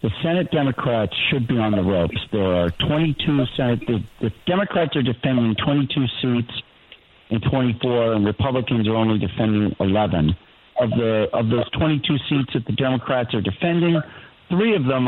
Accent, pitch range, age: American, 105-135 Hz, 50-69